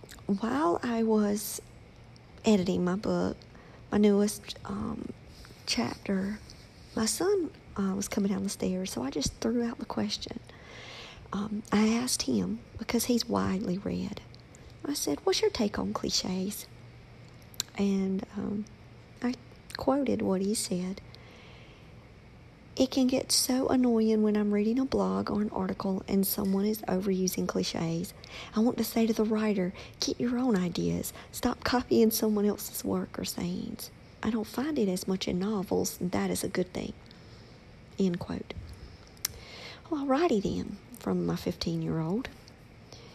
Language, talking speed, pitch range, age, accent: English, 145 wpm, 190-235 Hz, 50-69, American